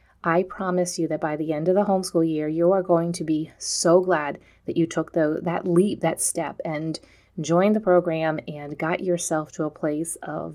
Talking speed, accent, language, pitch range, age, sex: 210 wpm, American, English, 160-195 Hz, 30-49, female